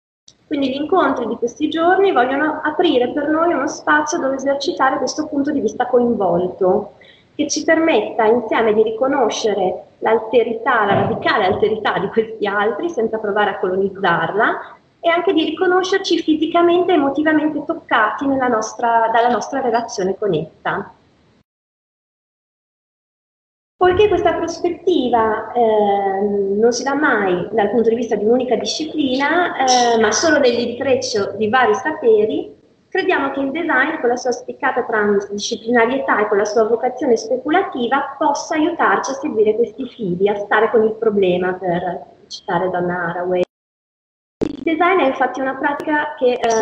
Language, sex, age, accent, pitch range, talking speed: Italian, female, 30-49, native, 215-305 Hz, 140 wpm